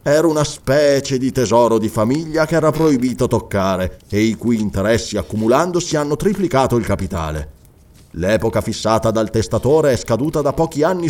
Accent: native